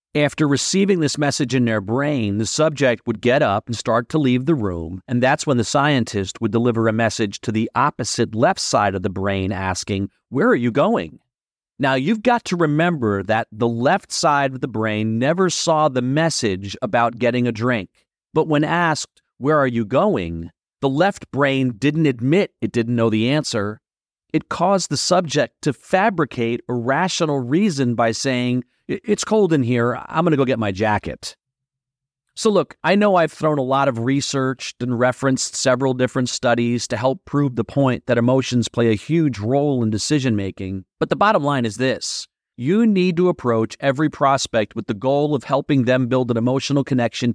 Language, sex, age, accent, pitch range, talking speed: English, male, 40-59, American, 115-150 Hz, 190 wpm